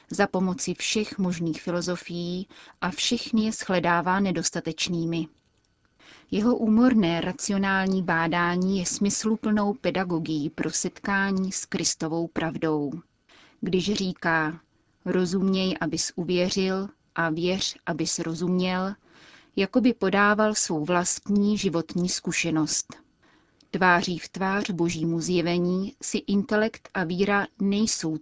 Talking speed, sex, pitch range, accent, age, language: 100 wpm, female, 170-200 Hz, native, 30-49, Czech